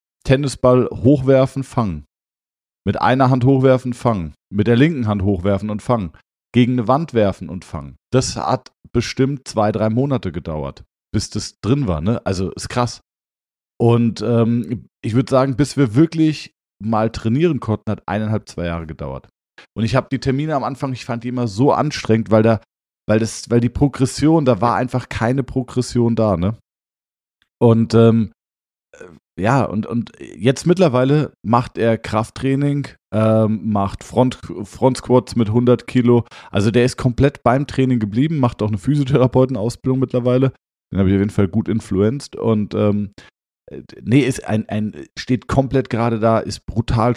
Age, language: 40-59, German